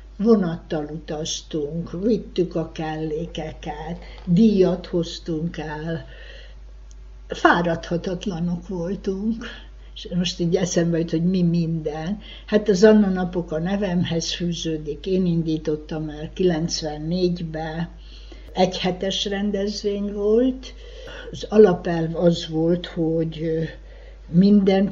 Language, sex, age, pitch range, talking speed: Hungarian, female, 60-79, 160-195 Hz, 90 wpm